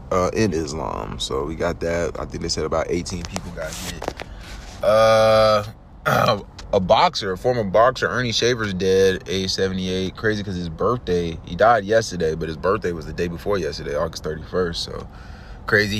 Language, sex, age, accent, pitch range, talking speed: English, male, 20-39, American, 85-100 Hz, 175 wpm